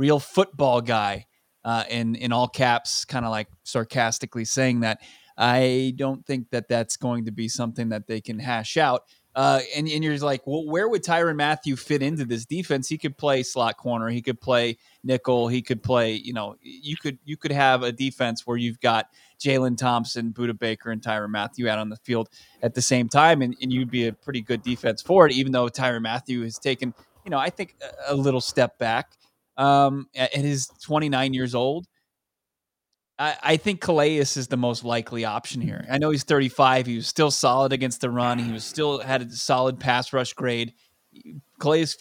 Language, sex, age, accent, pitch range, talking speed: English, male, 20-39, American, 120-135 Hz, 205 wpm